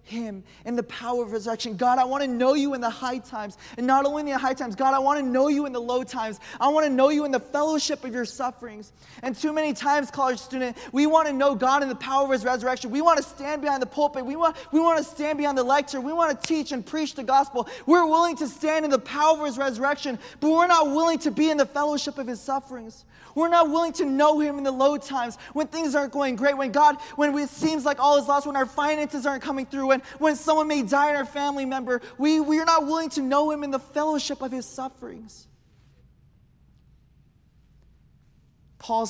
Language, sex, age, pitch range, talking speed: English, male, 20-39, 185-290 Hz, 245 wpm